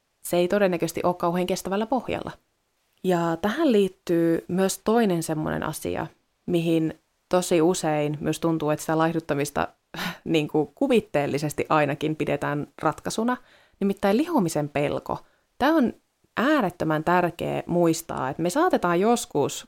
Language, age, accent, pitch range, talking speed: Finnish, 20-39, native, 155-195 Hz, 120 wpm